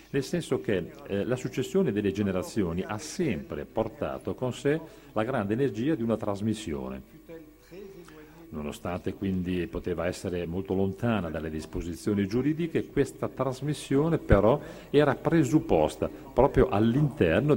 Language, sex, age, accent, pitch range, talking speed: Italian, male, 50-69, native, 90-135 Hz, 120 wpm